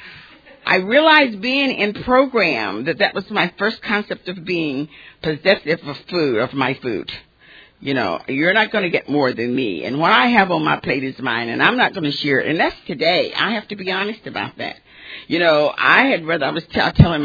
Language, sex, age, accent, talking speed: English, female, 50-69, American, 225 wpm